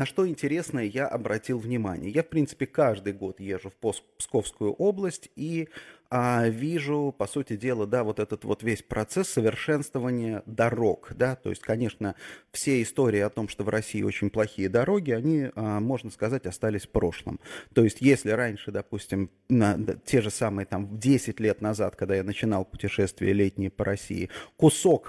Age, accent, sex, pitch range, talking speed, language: 30-49, native, male, 105-135 Hz, 165 wpm, Russian